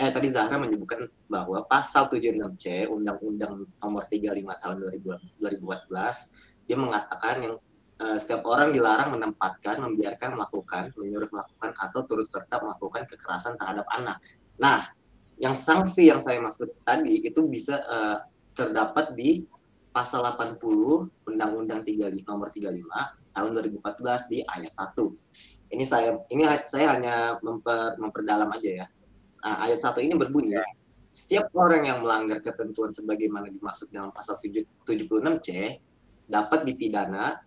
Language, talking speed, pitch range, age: Indonesian, 130 wpm, 105-155 Hz, 20-39